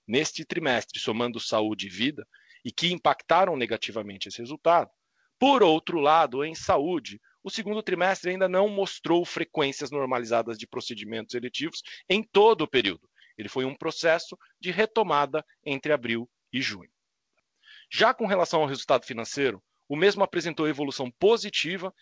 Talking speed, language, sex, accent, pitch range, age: 145 wpm, Portuguese, male, Brazilian, 135-185 Hz, 40-59